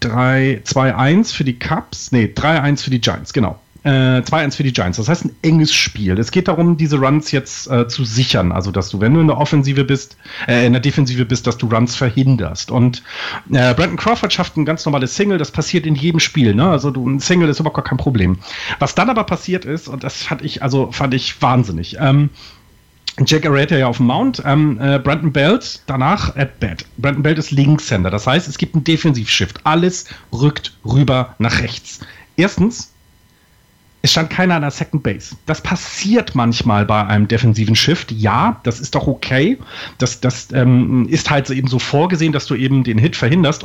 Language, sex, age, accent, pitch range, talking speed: German, male, 40-59, German, 120-155 Hz, 205 wpm